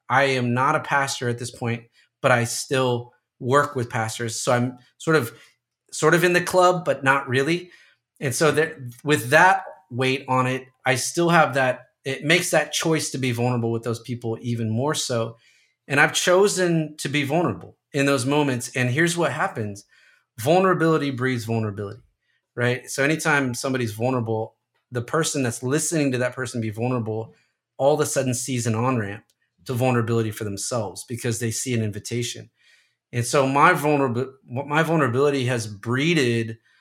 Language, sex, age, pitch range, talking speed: English, male, 30-49, 115-140 Hz, 170 wpm